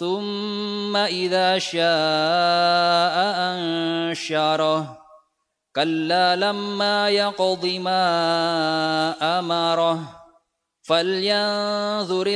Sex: male